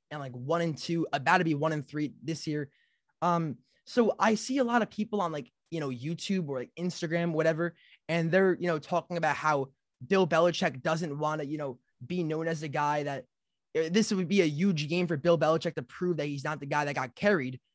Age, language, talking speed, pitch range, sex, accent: 20-39, English, 235 wpm, 150-195 Hz, male, American